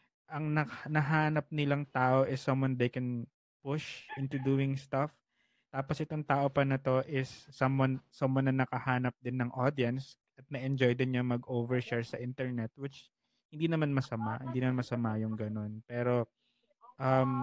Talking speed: 155 wpm